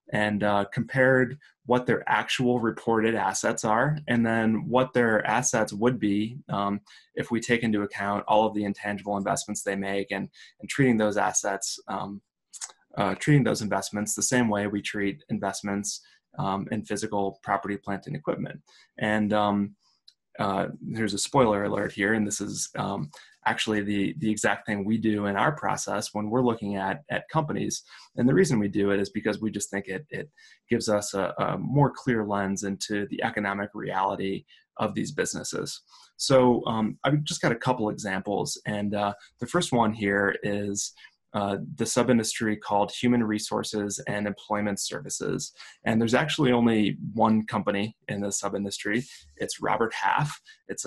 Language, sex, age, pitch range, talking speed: English, male, 20-39, 100-115 Hz, 170 wpm